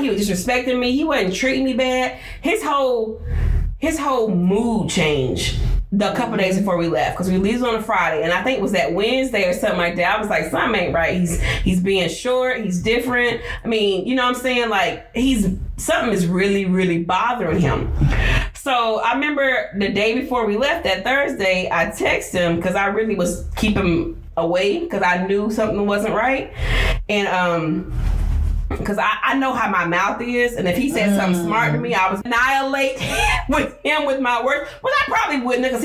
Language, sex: English, female